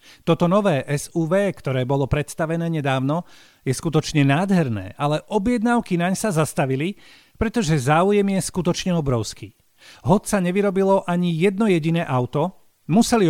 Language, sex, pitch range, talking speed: Slovak, male, 140-195 Hz, 120 wpm